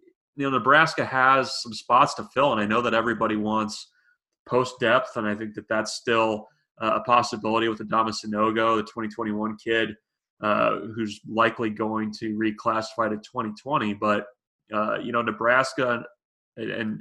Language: English